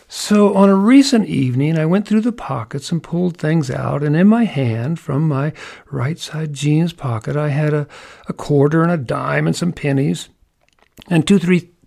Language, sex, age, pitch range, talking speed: English, male, 50-69, 135-175 Hz, 185 wpm